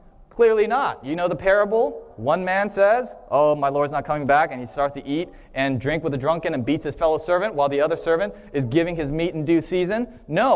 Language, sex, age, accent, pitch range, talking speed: English, male, 20-39, American, 150-235 Hz, 240 wpm